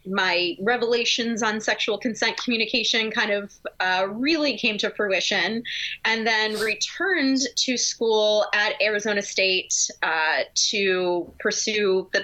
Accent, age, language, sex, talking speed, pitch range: American, 20-39, English, female, 125 wpm, 195-240 Hz